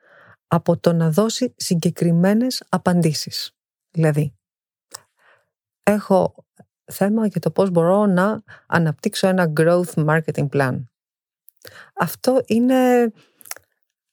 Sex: female